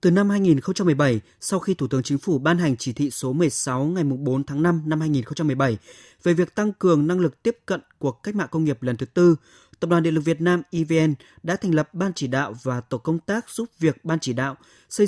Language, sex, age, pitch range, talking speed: Vietnamese, male, 20-39, 140-180 Hz, 240 wpm